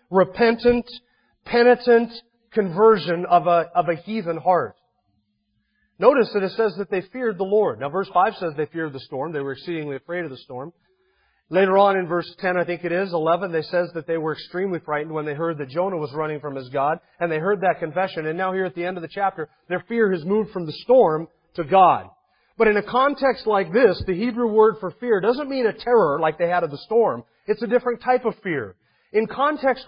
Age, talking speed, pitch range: 40-59, 225 wpm, 175-235 Hz